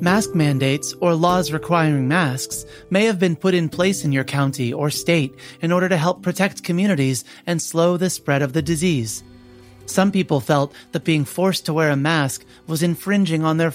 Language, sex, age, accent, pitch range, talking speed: English, male, 30-49, American, 140-175 Hz, 190 wpm